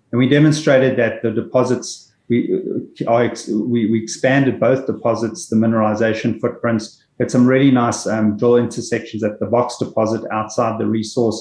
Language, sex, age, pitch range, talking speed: English, male, 30-49, 115-130 Hz, 145 wpm